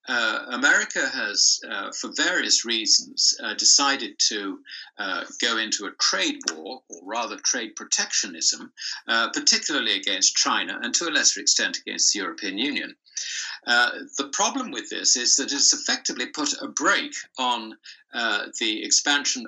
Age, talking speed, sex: 60-79, 150 wpm, male